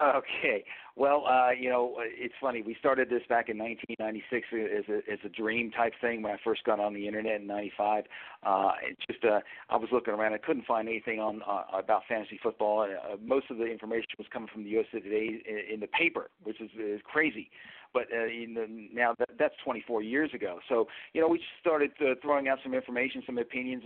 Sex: male